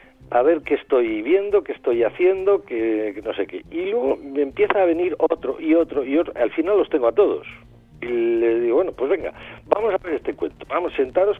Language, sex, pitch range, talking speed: Spanish, male, 115-190 Hz, 225 wpm